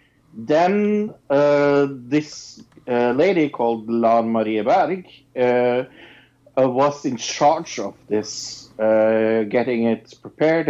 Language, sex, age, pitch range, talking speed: English, male, 50-69, 125-165 Hz, 110 wpm